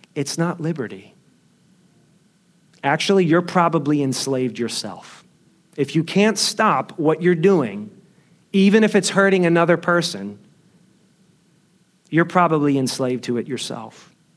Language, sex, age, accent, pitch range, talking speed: English, male, 40-59, American, 160-195 Hz, 115 wpm